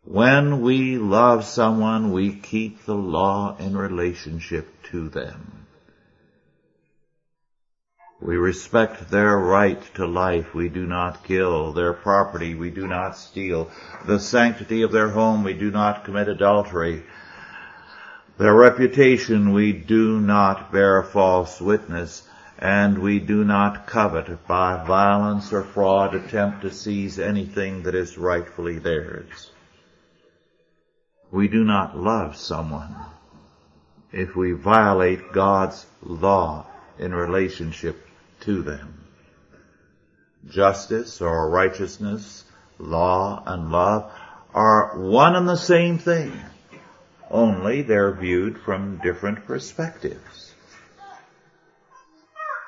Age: 60-79